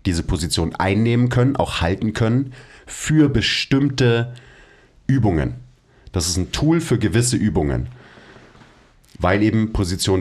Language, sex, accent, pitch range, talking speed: German, male, German, 90-115 Hz, 120 wpm